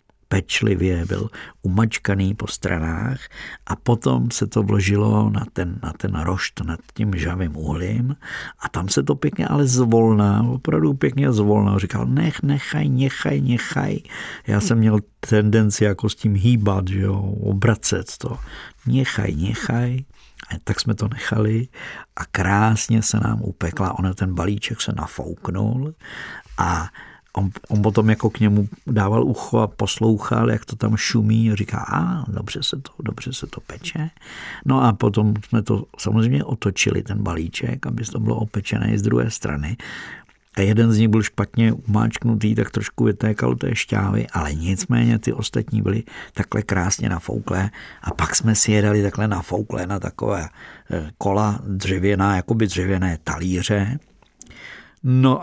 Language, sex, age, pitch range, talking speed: Czech, male, 50-69, 100-115 Hz, 150 wpm